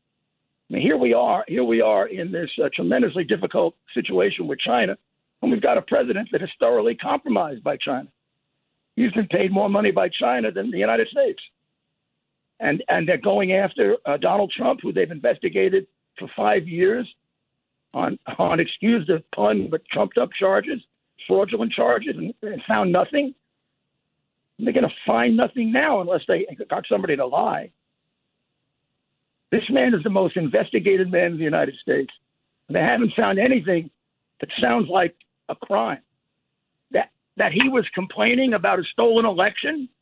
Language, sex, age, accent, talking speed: English, male, 60-79, American, 165 wpm